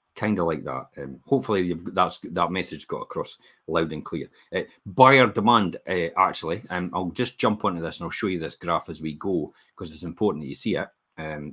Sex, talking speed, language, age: male, 235 wpm, English, 40-59